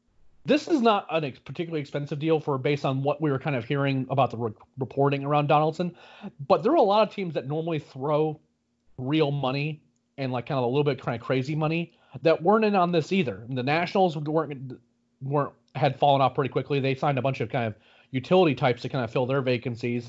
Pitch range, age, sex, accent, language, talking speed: 125-155 Hz, 30-49, male, American, English, 225 wpm